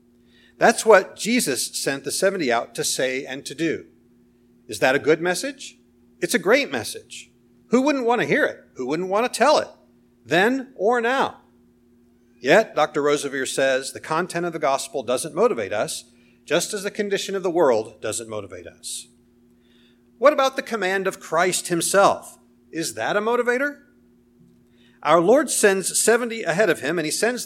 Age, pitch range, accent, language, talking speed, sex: 50-69, 120-195 Hz, American, English, 175 wpm, male